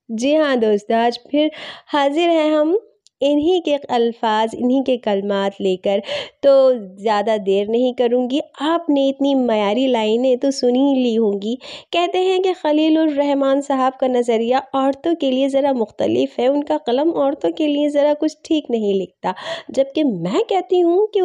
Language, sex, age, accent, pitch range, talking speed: Hindi, female, 30-49, native, 215-295 Hz, 160 wpm